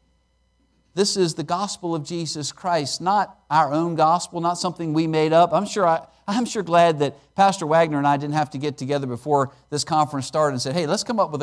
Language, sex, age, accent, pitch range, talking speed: English, male, 50-69, American, 155-240 Hz, 225 wpm